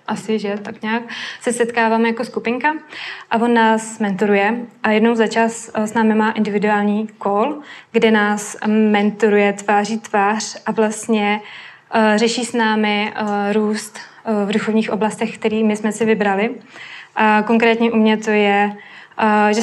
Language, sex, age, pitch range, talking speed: Czech, female, 20-39, 210-230 Hz, 140 wpm